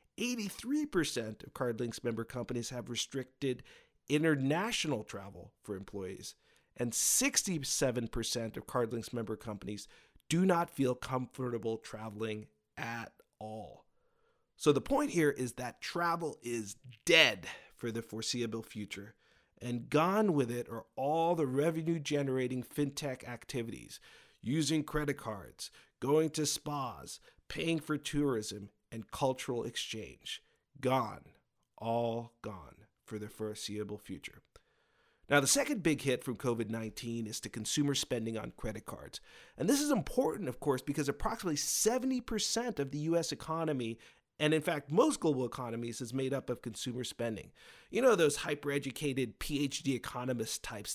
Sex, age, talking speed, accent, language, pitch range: male, 50-69, 130 wpm, American, English, 115-160 Hz